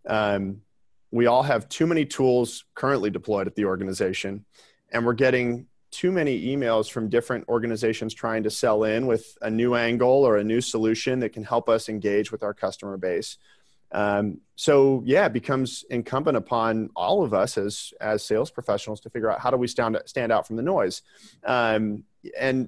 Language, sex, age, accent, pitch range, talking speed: English, male, 40-59, American, 105-125 Hz, 185 wpm